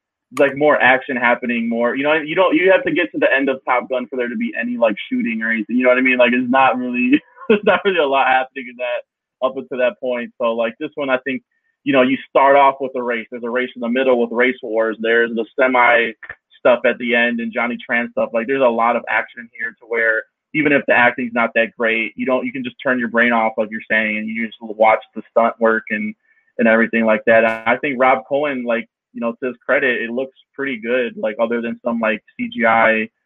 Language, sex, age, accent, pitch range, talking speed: English, male, 20-39, American, 115-135 Hz, 260 wpm